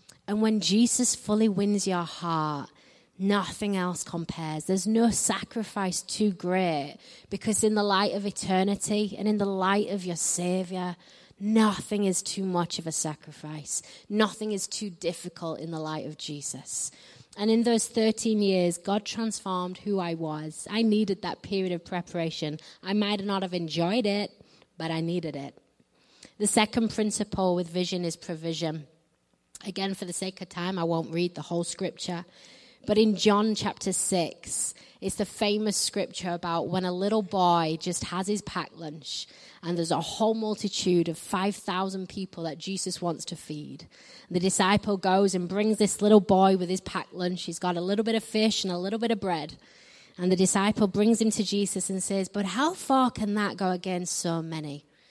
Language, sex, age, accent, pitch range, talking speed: English, female, 20-39, British, 175-210 Hz, 180 wpm